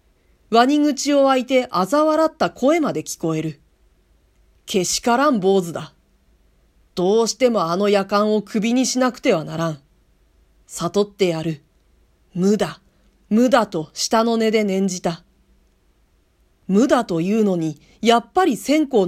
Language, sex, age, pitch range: Japanese, female, 40-59, 155-225 Hz